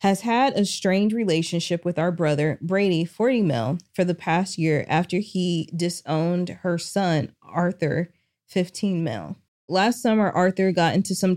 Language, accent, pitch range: English, American, 160-190 Hz